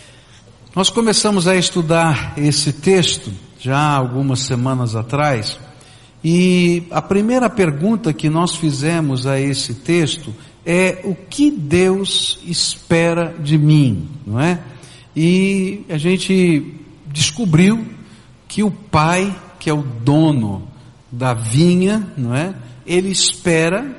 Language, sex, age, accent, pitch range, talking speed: Portuguese, male, 60-79, Brazilian, 140-195 Hz, 115 wpm